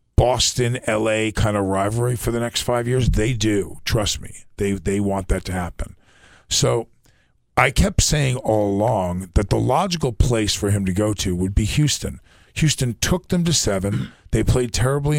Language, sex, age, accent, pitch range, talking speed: English, male, 50-69, American, 100-125 Hz, 180 wpm